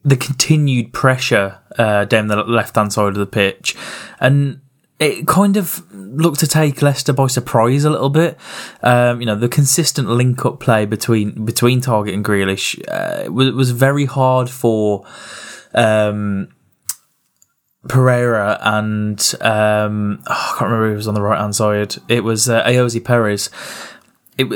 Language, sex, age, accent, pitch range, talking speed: English, male, 10-29, British, 110-135 Hz, 155 wpm